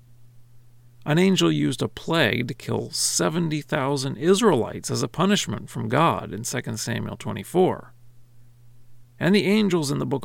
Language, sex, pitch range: English, male, 120-145 Hz